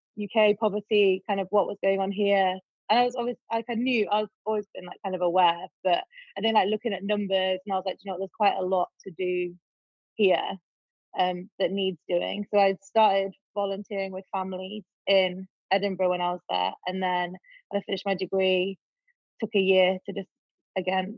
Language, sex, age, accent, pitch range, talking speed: English, female, 20-39, British, 185-215 Hz, 205 wpm